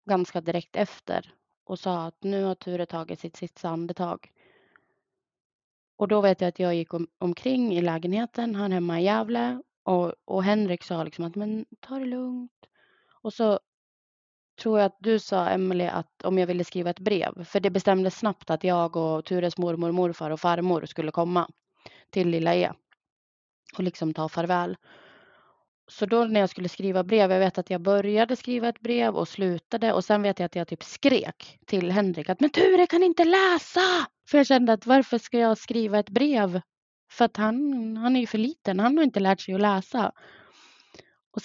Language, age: Swedish, 20-39